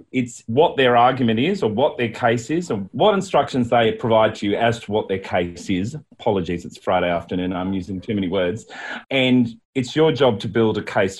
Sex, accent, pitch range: male, Australian, 90-120 Hz